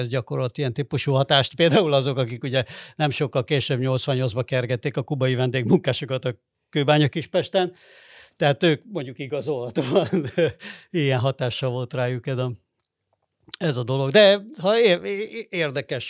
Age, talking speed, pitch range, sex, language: 60-79, 140 wpm, 130-165 Hz, male, Hungarian